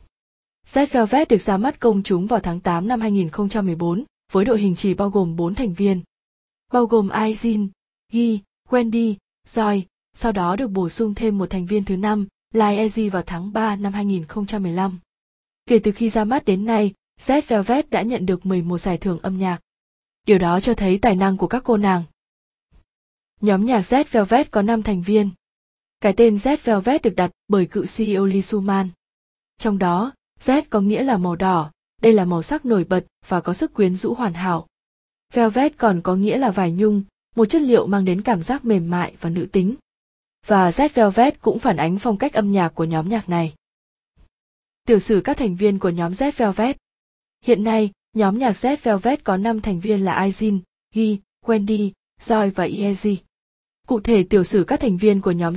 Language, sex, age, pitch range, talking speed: Vietnamese, female, 20-39, 190-230 Hz, 190 wpm